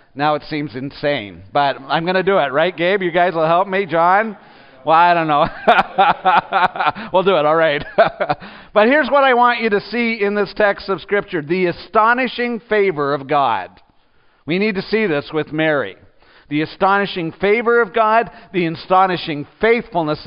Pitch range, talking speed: 140-195 Hz, 180 wpm